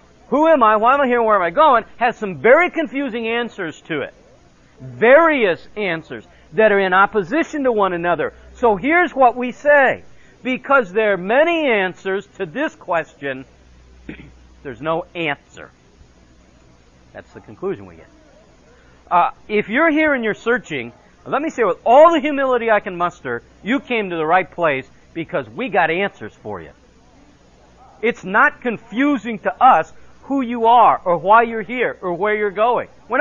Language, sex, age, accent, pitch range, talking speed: English, male, 50-69, American, 170-260 Hz, 170 wpm